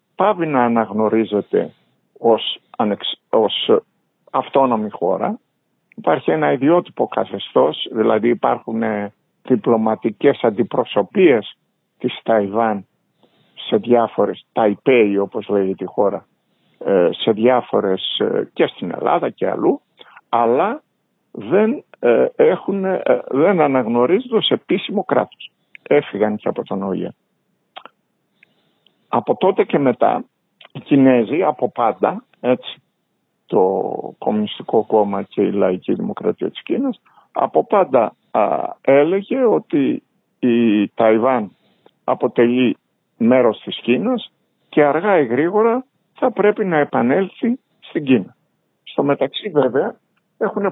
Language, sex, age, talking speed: Greek, male, 60-79, 110 wpm